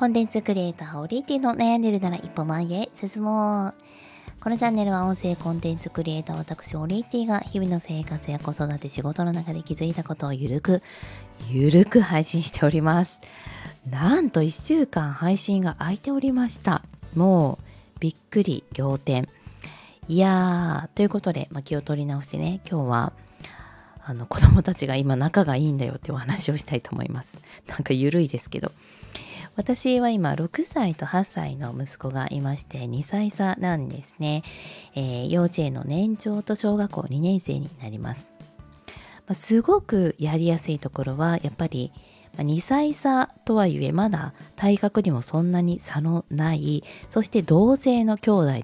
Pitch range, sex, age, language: 145-200 Hz, female, 20-39, Japanese